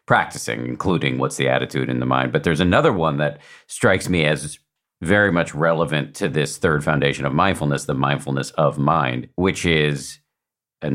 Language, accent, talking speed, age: English, American, 175 wpm, 50-69